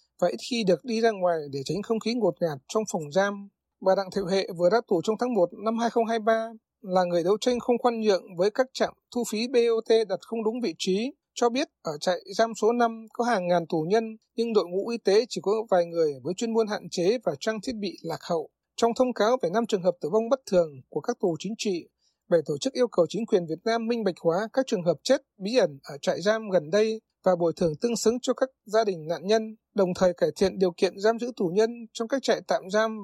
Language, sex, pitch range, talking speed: Vietnamese, male, 180-230 Hz, 260 wpm